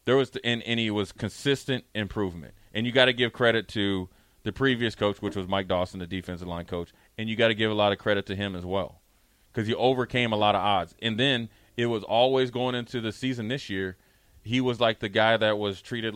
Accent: American